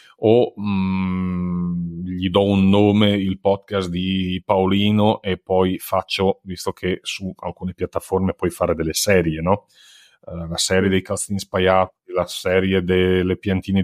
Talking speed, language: 145 wpm, Italian